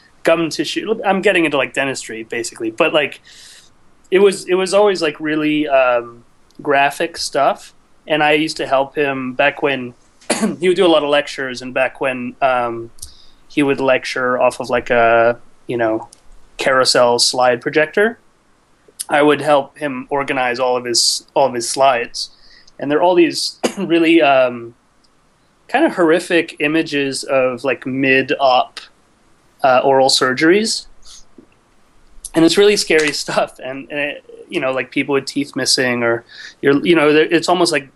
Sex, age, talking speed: male, 30-49, 160 wpm